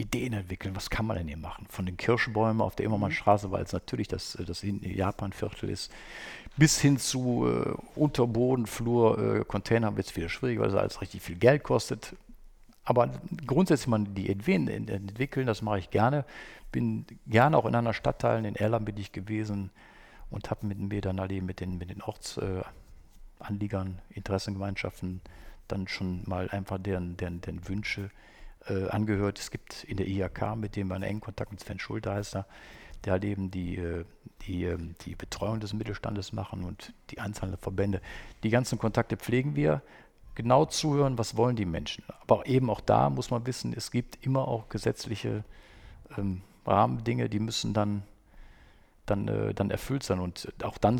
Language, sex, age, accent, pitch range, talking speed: German, male, 50-69, German, 95-115 Hz, 170 wpm